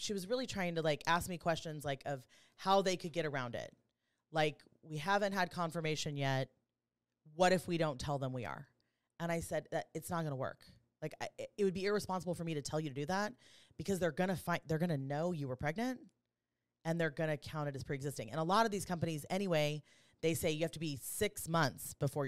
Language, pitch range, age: English, 140-180 Hz, 30-49